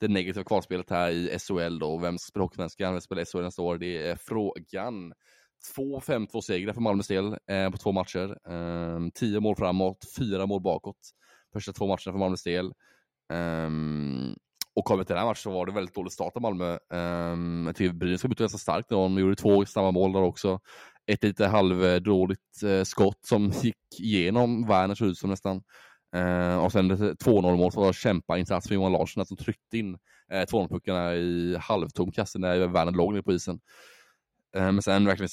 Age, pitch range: 20-39, 90-100 Hz